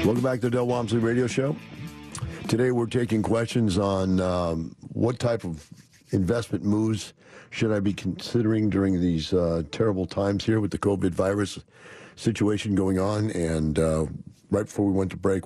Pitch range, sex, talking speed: 85-105 Hz, male, 170 wpm